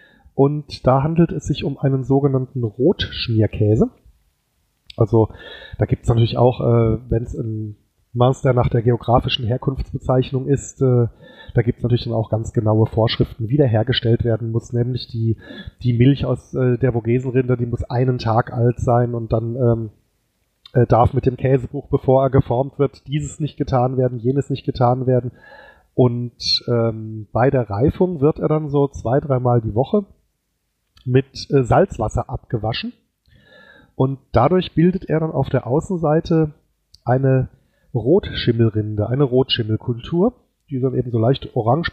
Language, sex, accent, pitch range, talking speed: German, male, German, 115-140 Hz, 155 wpm